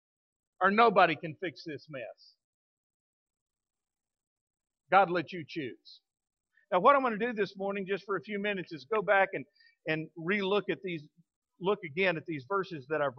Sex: male